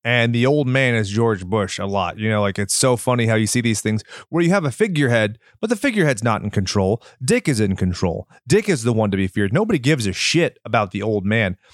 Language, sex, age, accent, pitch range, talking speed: English, male, 30-49, American, 110-155 Hz, 255 wpm